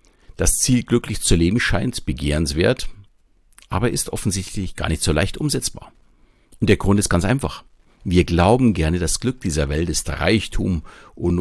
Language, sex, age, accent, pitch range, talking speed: German, male, 50-69, German, 80-110 Hz, 165 wpm